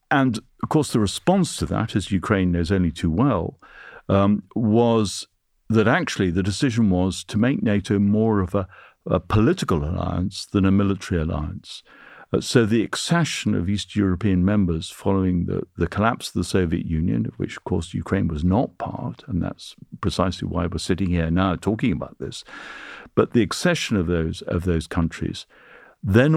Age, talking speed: 50-69, 175 wpm